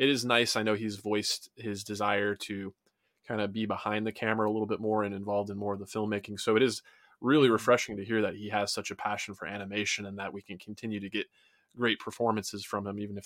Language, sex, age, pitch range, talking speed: English, male, 20-39, 100-110 Hz, 250 wpm